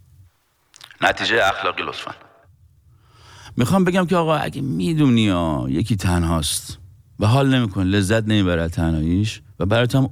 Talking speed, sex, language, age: 125 wpm, male, Persian, 50-69